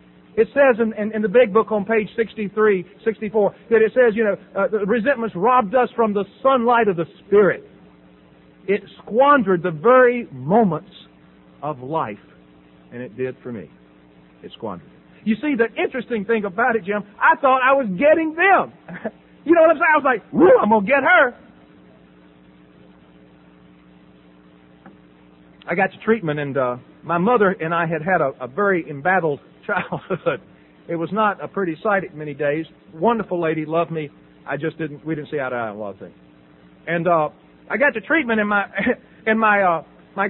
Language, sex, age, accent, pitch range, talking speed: English, male, 50-69, American, 145-240 Hz, 185 wpm